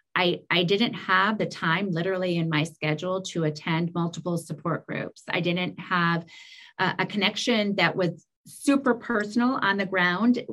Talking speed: 160 wpm